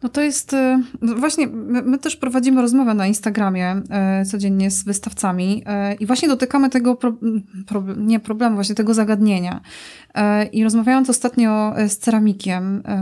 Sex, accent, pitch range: female, native, 210-245 Hz